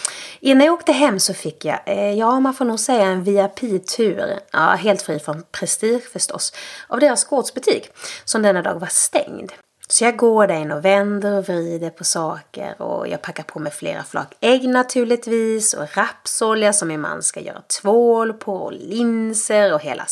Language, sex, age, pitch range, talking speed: English, female, 30-49, 185-245 Hz, 180 wpm